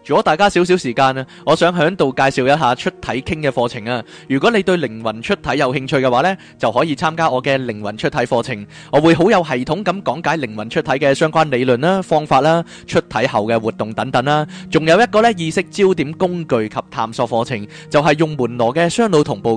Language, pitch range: Chinese, 125-180 Hz